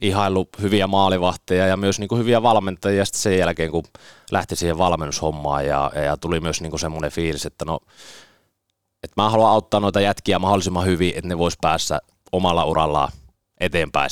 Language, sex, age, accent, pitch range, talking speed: Finnish, male, 30-49, native, 80-100 Hz, 165 wpm